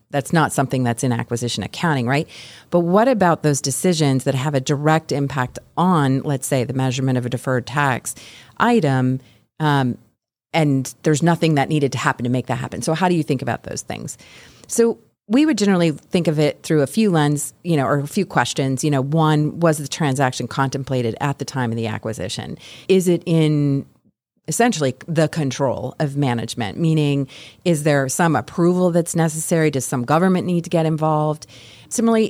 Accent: American